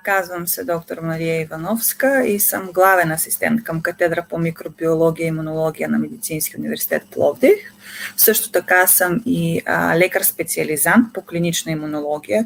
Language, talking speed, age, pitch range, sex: Bulgarian, 140 wpm, 30-49, 165-210 Hz, female